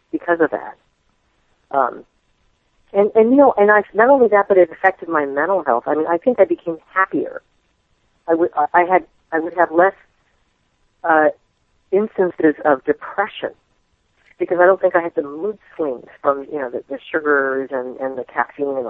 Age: 40-59